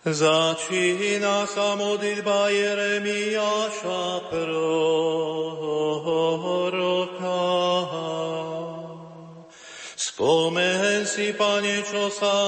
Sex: male